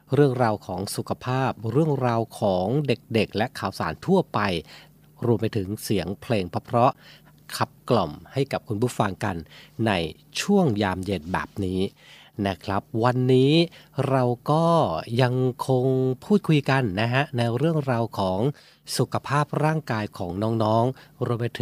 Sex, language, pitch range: male, Thai, 110-145 Hz